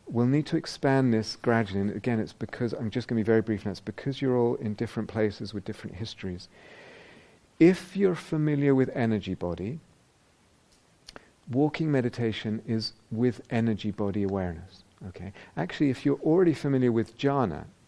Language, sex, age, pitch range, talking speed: English, male, 50-69, 100-130 Hz, 165 wpm